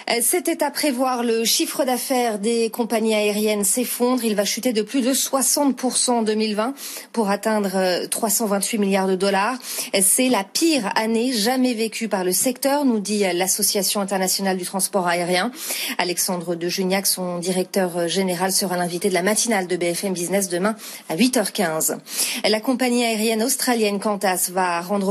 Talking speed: 155 wpm